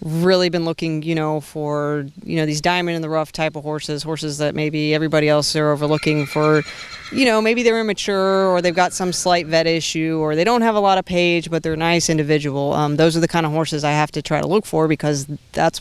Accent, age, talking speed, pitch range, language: American, 30-49, 245 wpm, 150-170 Hz, English